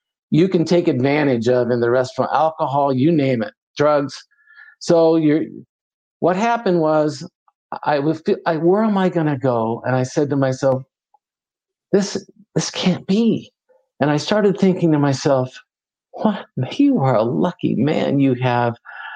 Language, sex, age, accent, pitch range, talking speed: English, male, 50-69, American, 145-210 Hz, 155 wpm